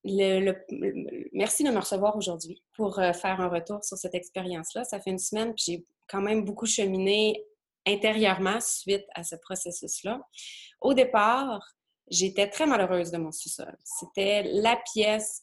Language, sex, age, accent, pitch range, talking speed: French, female, 20-39, Canadian, 175-210 Hz, 165 wpm